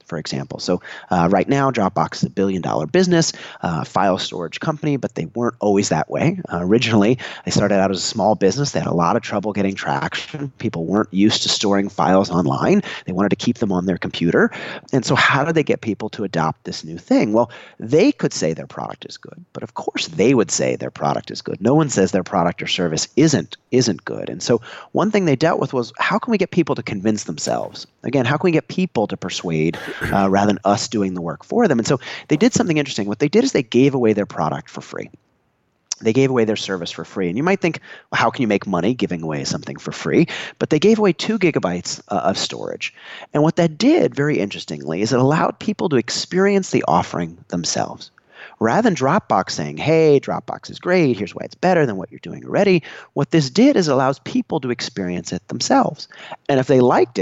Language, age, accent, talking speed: English, 30-49, American, 230 wpm